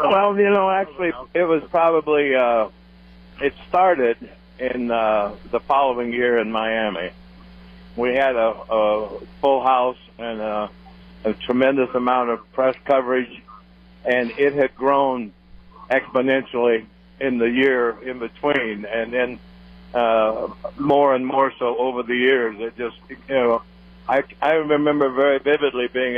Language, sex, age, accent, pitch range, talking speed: English, male, 60-79, American, 110-135 Hz, 140 wpm